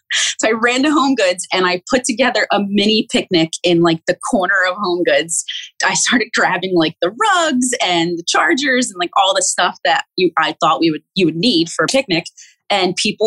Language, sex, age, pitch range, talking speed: English, female, 20-39, 165-220 Hz, 215 wpm